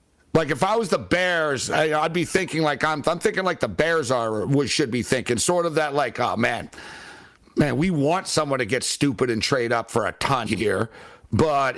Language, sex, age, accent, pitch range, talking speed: English, male, 60-79, American, 120-170 Hz, 220 wpm